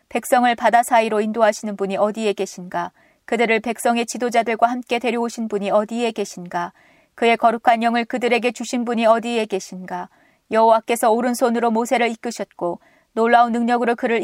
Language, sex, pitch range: Korean, female, 205-240 Hz